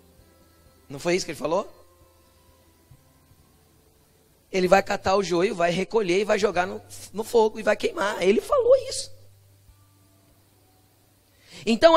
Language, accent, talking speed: Portuguese, Brazilian, 130 wpm